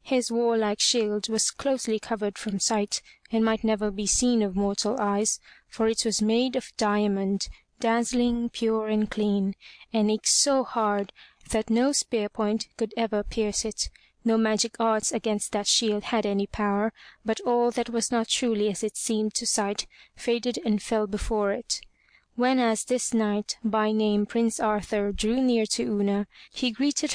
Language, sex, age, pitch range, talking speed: English, female, 20-39, 205-235 Hz, 170 wpm